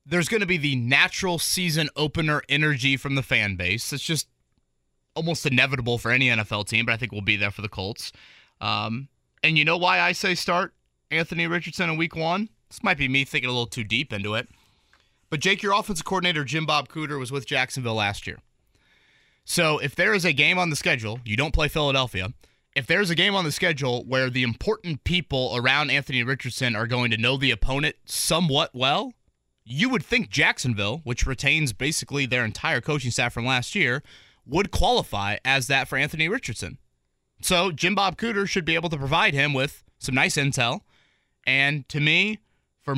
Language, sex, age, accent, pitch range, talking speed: English, male, 30-49, American, 120-165 Hz, 200 wpm